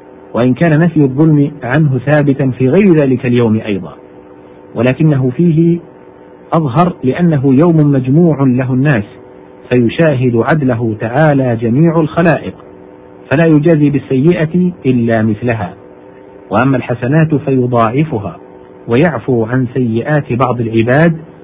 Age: 50-69